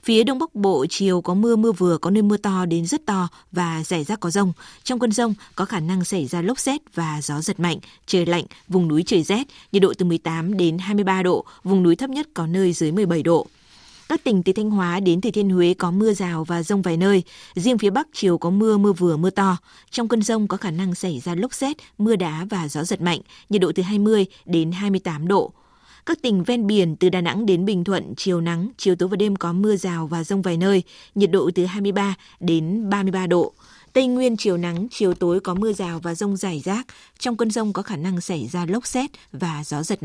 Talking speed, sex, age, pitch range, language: 245 wpm, female, 20-39, 175-210 Hz, Vietnamese